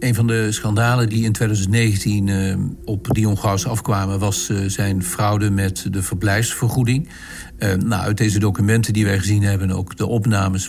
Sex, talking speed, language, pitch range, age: male, 175 wpm, Dutch, 95-110 Hz, 50-69